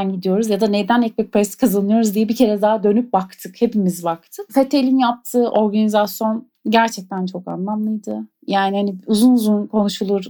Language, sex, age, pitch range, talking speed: Turkish, female, 30-49, 205-255 Hz, 150 wpm